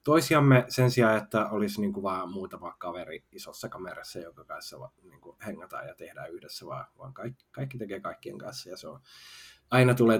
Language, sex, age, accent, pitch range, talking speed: Finnish, male, 20-39, native, 105-125 Hz, 170 wpm